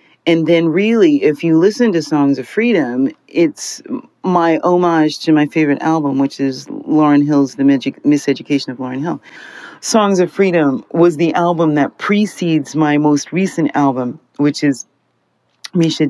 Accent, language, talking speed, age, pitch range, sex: American, English, 155 wpm, 40-59, 140-170 Hz, female